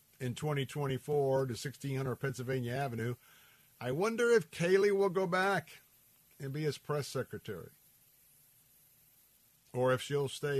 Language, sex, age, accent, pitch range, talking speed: English, male, 50-69, American, 125-145 Hz, 125 wpm